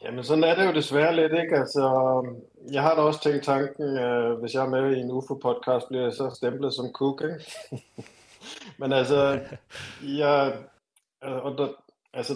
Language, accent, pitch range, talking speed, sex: Danish, native, 125-140 Hz, 165 wpm, male